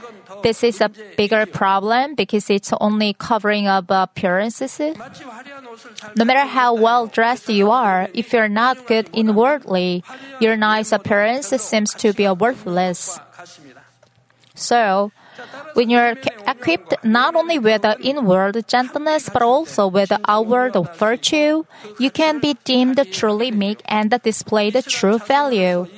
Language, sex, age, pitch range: Korean, female, 20-39, 205-245 Hz